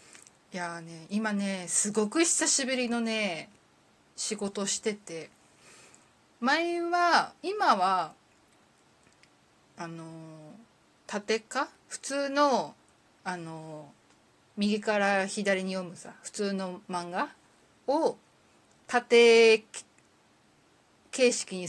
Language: Japanese